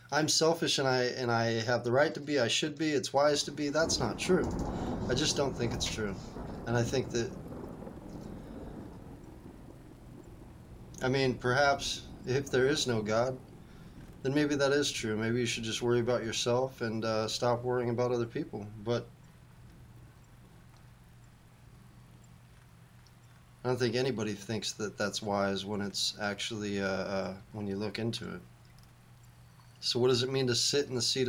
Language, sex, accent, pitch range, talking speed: English, male, American, 105-125 Hz, 165 wpm